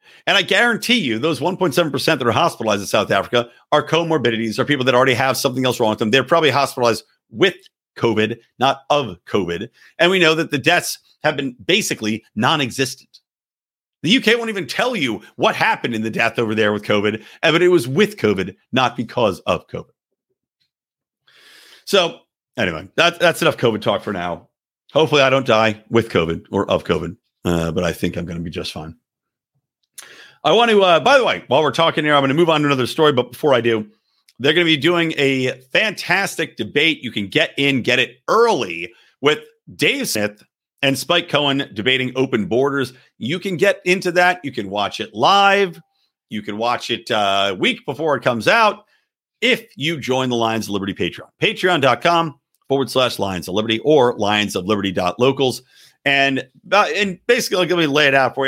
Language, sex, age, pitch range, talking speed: English, male, 50-69, 115-165 Hz, 195 wpm